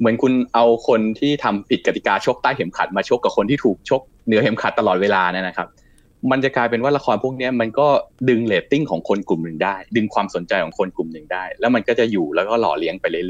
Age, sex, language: 20-39, male, Thai